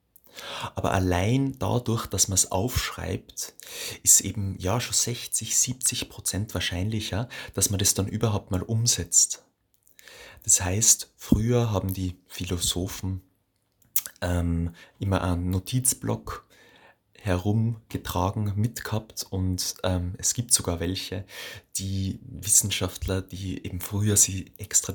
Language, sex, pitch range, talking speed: German, male, 90-110 Hz, 115 wpm